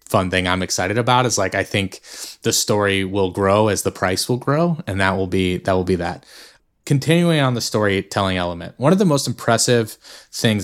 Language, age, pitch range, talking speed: English, 20-39, 95-125 Hz, 210 wpm